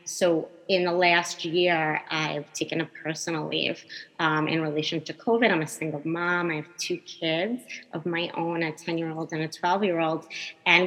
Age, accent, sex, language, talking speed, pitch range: 30-49, American, female, English, 200 wpm, 160-180 Hz